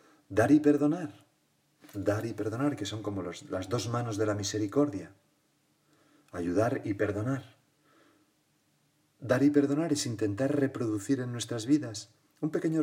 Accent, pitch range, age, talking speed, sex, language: Spanish, 100-145 Hz, 40-59, 135 wpm, male, Spanish